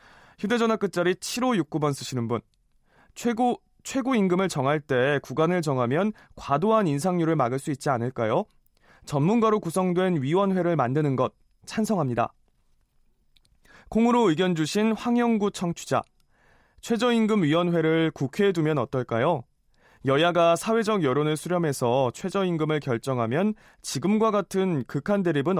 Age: 20-39